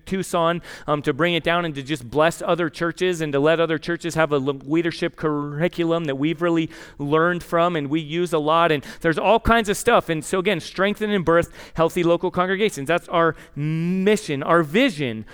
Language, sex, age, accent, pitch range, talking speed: English, male, 30-49, American, 155-185 Hz, 200 wpm